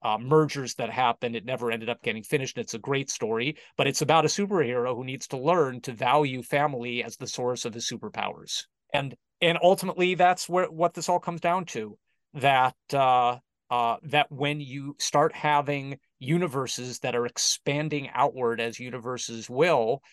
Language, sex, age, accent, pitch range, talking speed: English, male, 30-49, American, 125-150 Hz, 175 wpm